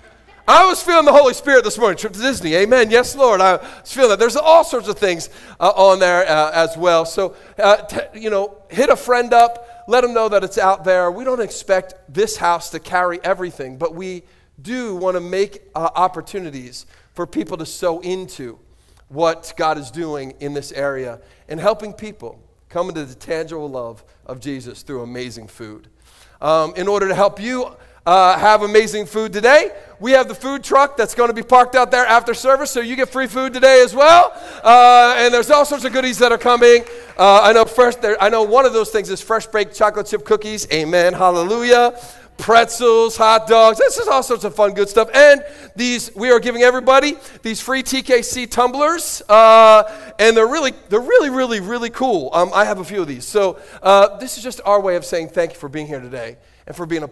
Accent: American